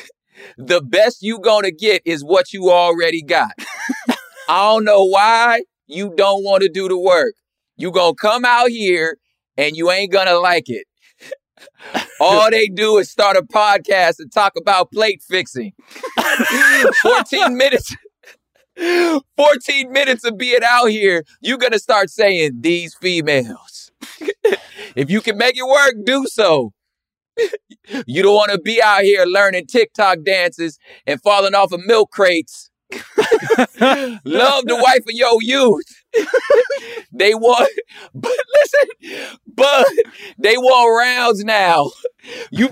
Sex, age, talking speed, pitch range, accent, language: male, 30-49, 145 wpm, 195-280 Hz, American, English